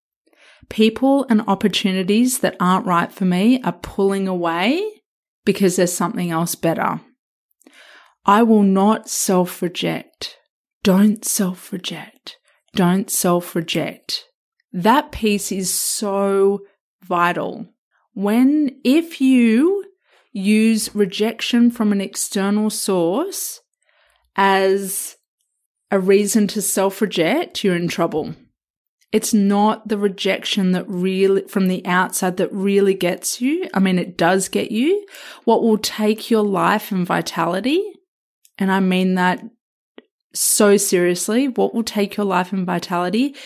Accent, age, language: Australian, 30-49, English